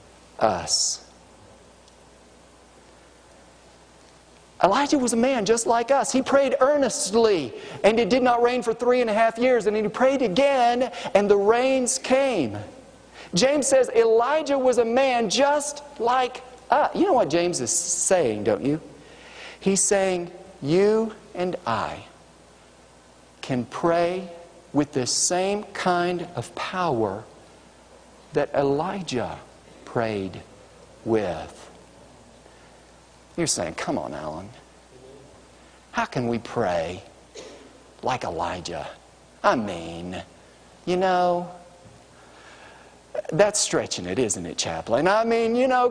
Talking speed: 115 wpm